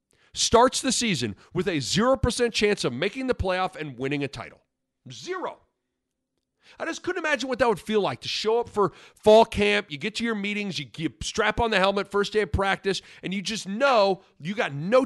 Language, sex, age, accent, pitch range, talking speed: English, male, 40-59, American, 150-225 Hz, 210 wpm